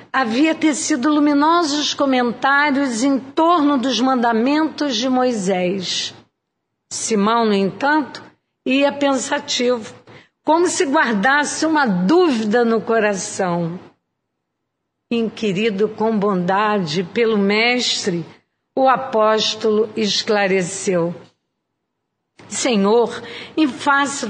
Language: Portuguese